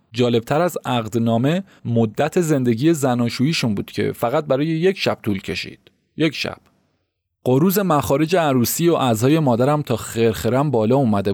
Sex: male